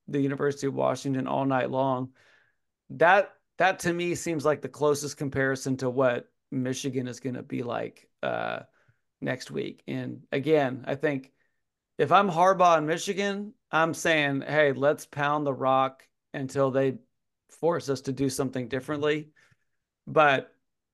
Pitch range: 135-170 Hz